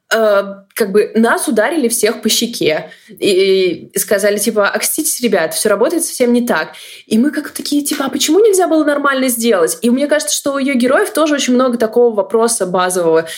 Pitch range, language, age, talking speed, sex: 190-265 Hz, Russian, 20-39, 185 wpm, female